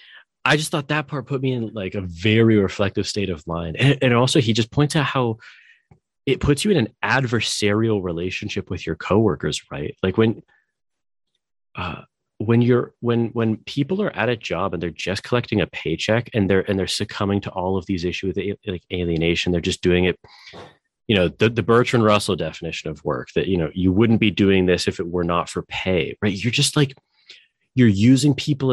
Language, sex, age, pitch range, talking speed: English, male, 30-49, 95-125 Hz, 205 wpm